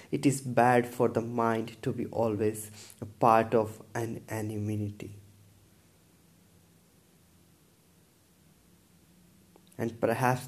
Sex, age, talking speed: male, 20-39, 90 wpm